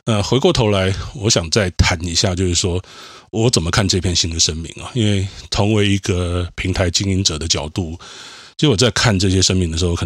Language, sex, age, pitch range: Chinese, male, 30-49, 85-100 Hz